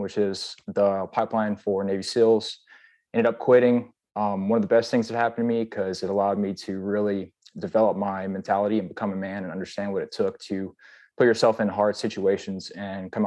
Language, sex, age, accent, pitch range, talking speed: English, male, 20-39, American, 100-115 Hz, 210 wpm